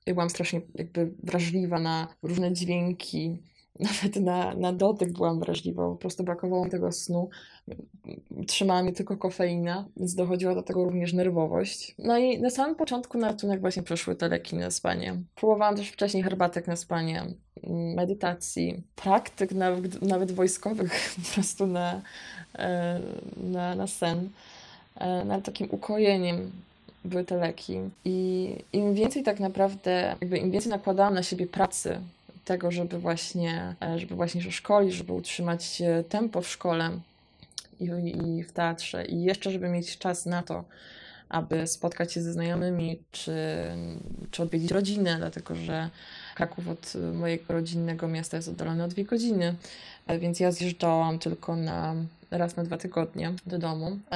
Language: Polish